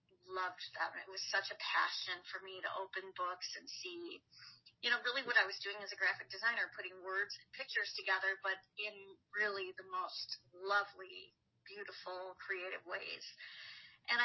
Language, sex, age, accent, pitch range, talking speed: English, female, 30-49, American, 185-240 Hz, 170 wpm